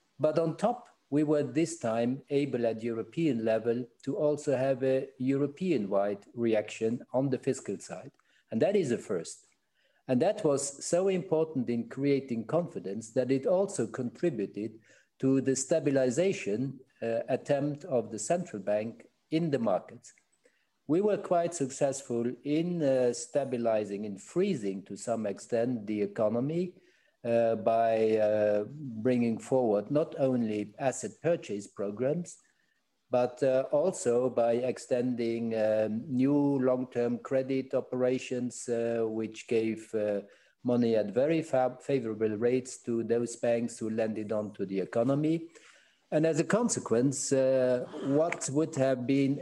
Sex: male